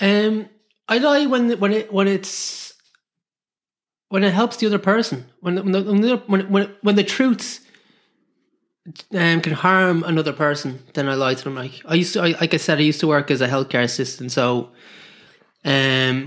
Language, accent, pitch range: English, Irish, 140-190 Hz